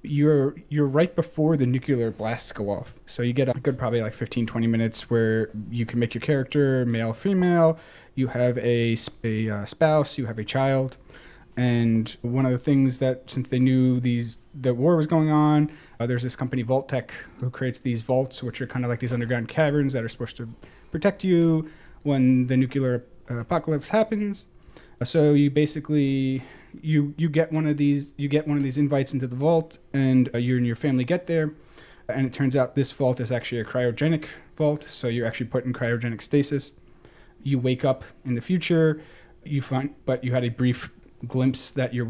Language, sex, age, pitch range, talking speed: English, male, 30-49, 120-150 Hz, 195 wpm